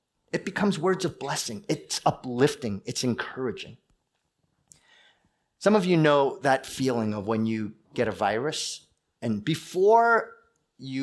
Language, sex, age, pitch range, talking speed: English, male, 30-49, 125-165 Hz, 130 wpm